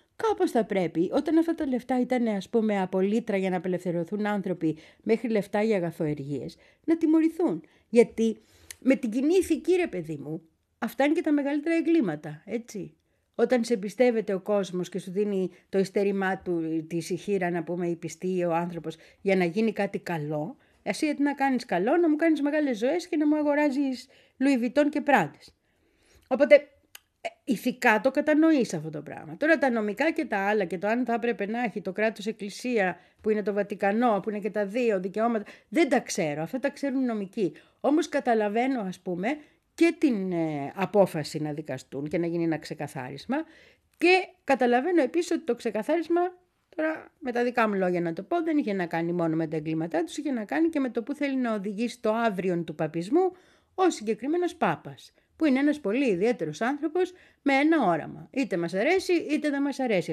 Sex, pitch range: female, 180-290 Hz